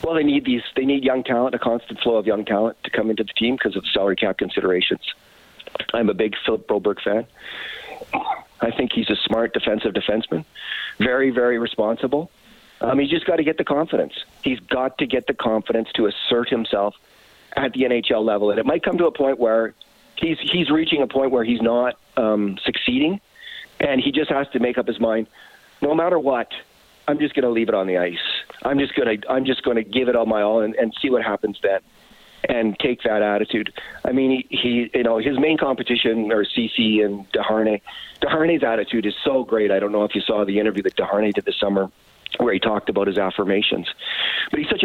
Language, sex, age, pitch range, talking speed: English, male, 40-59, 110-140 Hz, 215 wpm